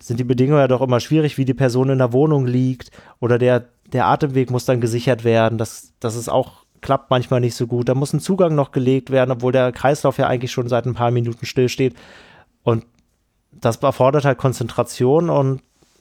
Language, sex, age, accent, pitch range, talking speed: German, male, 30-49, German, 120-150 Hz, 205 wpm